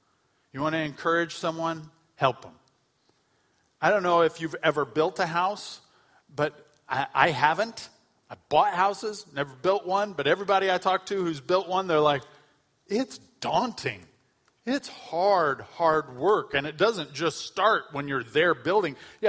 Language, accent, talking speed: English, American, 160 wpm